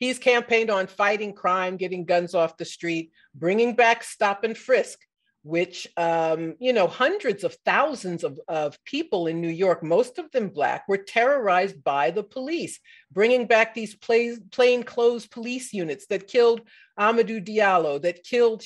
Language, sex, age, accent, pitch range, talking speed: English, female, 50-69, American, 175-240 Hz, 160 wpm